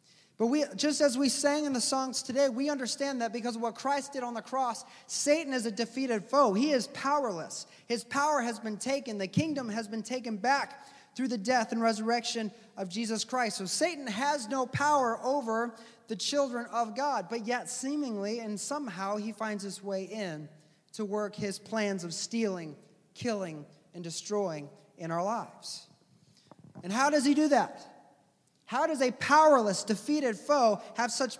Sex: male